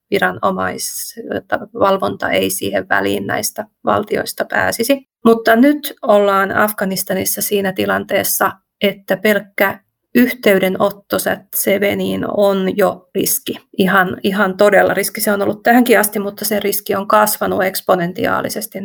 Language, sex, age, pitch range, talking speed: Finnish, female, 30-49, 190-215 Hz, 110 wpm